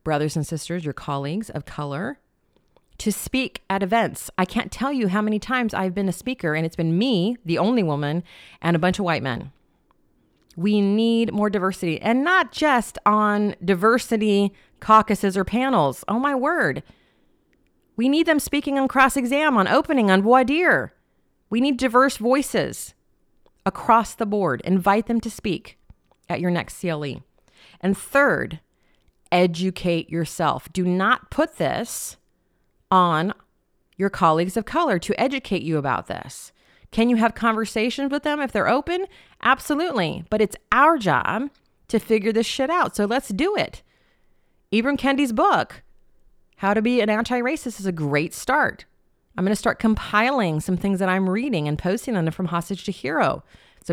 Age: 30-49